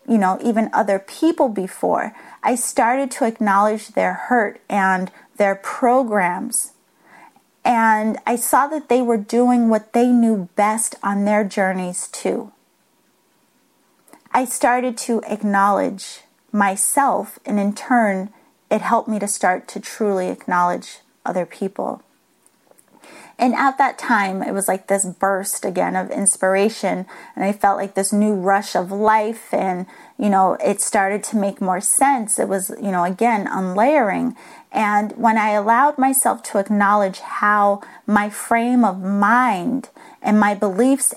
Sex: female